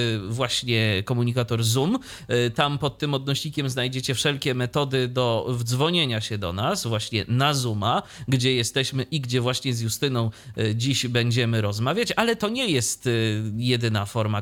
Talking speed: 140 wpm